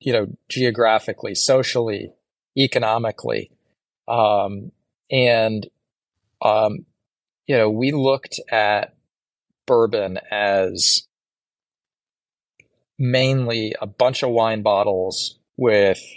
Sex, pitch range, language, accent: male, 105-125 Hz, English, American